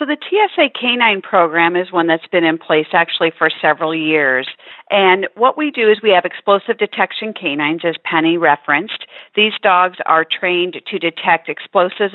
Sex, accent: female, American